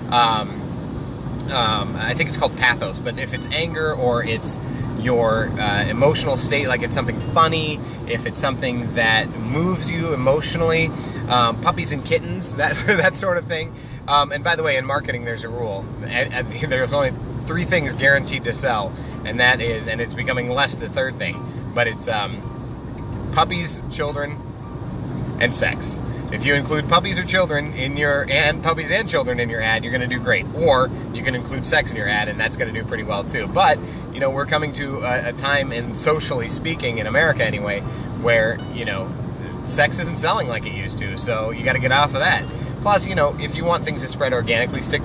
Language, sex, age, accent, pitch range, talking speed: English, male, 30-49, American, 120-145 Hz, 205 wpm